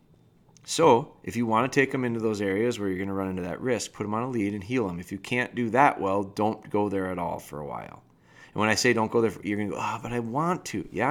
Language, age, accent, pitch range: English, 30-49, American, 100-135 Hz